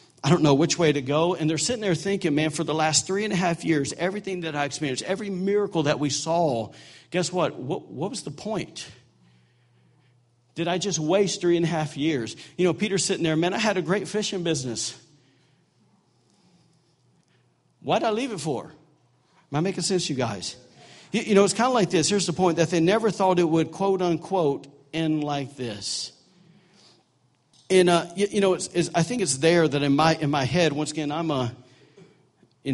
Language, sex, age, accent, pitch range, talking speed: English, male, 50-69, American, 130-175 Hz, 210 wpm